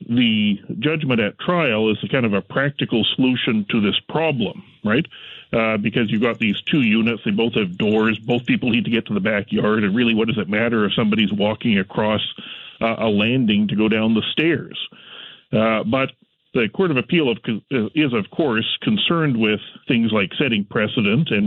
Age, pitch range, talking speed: 40-59, 110-150 Hz, 185 wpm